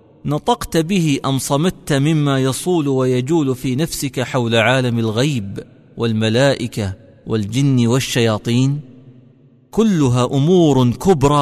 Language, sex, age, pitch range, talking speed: Arabic, male, 40-59, 120-140 Hz, 95 wpm